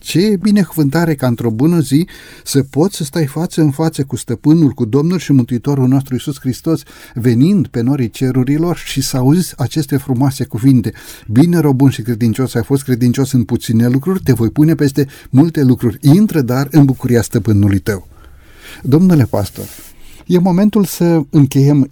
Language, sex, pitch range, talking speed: Romanian, male, 125-160 Hz, 165 wpm